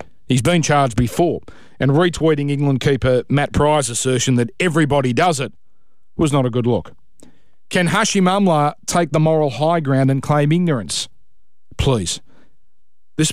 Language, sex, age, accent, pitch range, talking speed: English, male, 40-59, Australian, 115-160 Hz, 150 wpm